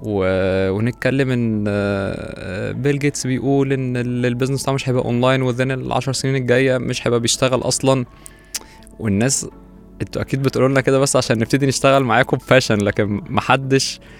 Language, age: Arabic, 20-39